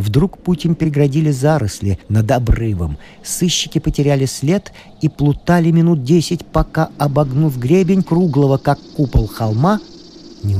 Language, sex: Russian, male